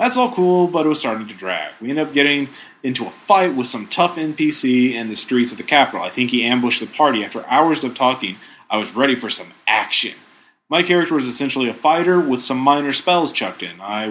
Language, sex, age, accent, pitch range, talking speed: English, male, 30-49, American, 125-165 Hz, 235 wpm